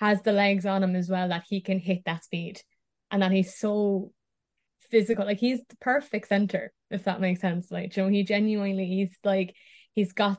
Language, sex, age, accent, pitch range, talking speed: English, female, 20-39, Irish, 180-200 Hz, 210 wpm